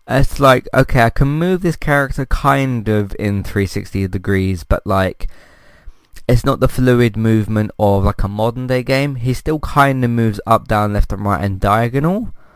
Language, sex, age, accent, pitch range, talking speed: English, male, 20-39, British, 100-125 Hz, 180 wpm